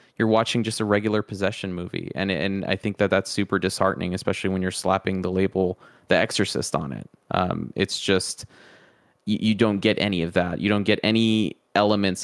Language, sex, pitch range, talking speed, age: English, male, 90-100 Hz, 195 wpm, 20-39